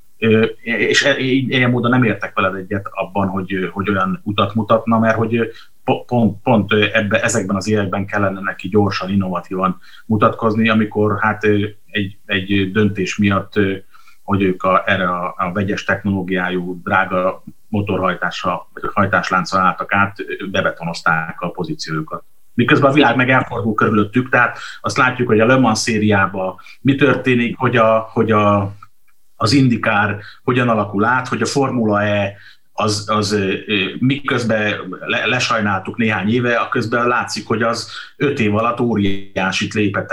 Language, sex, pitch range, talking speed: Hungarian, male, 100-115 Hz, 140 wpm